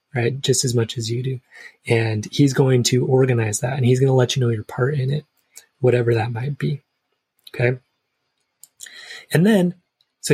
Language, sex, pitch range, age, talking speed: English, male, 120-145 Hz, 20-39, 185 wpm